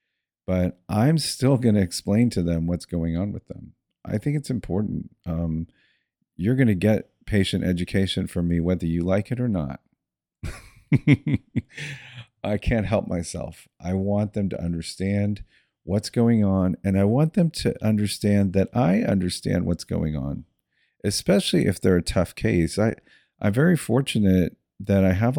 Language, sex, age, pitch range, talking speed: English, male, 40-59, 85-115 Hz, 160 wpm